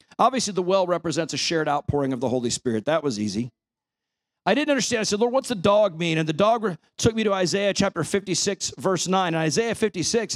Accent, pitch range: American, 155-200 Hz